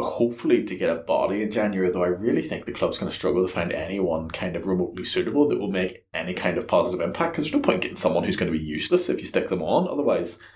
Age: 20-39